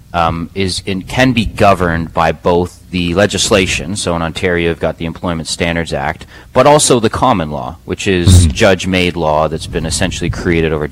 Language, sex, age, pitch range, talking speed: English, male, 30-49, 85-100 Hz, 180 wpm